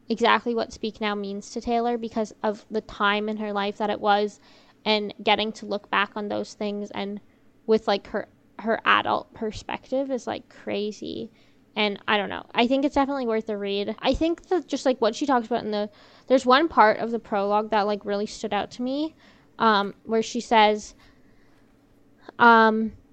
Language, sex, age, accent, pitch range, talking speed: English, female, 10-29, American, 205-230 Hz, 195 wpm